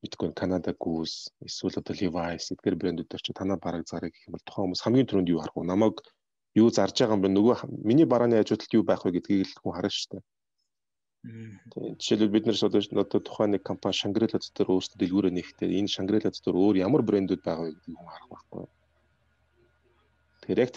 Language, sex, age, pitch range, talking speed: Russian, male, 30-49, 85-105 Hz, 90 wpm